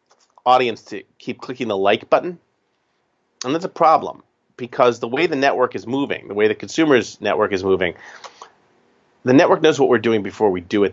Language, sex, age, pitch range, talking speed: English, male, 40-59, 105-165 Hz, 190 wpm